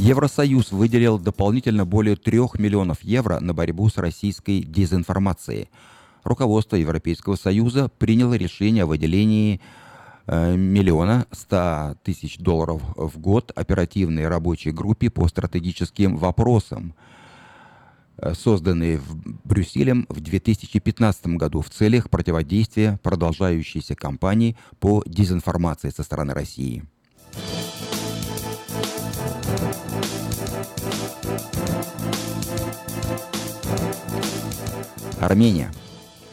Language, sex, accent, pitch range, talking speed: Russian, male, native, 85-110 Hz, 80 wpm